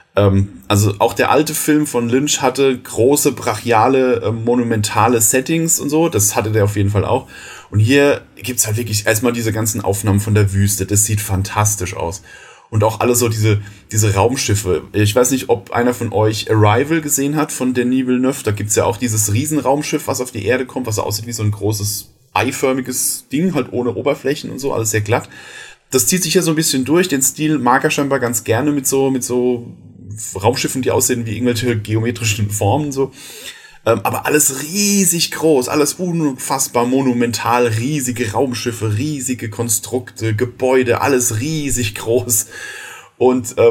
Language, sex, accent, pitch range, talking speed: German, male, German, 110-135 Hz, 180 wpm